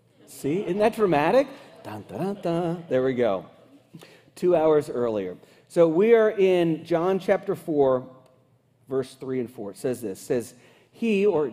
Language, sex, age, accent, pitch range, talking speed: English, male, 40-59, American, 140-185 Hz, 160 wpm